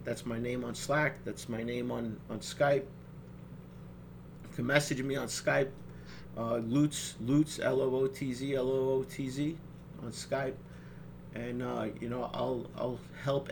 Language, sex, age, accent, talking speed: English, male, 30-49, American, 175 wpm